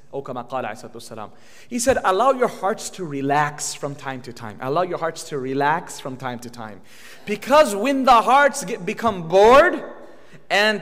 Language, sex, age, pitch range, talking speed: English, male, 30-49, 160-235 Hz, 150 wpm